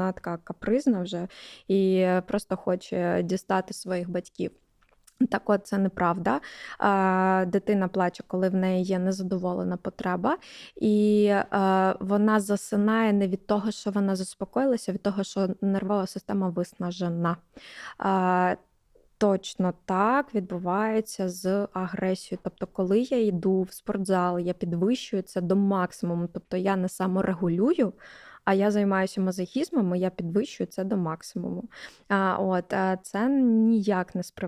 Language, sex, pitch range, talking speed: Ukrainian, female, 185-210 Hz, 125 wpm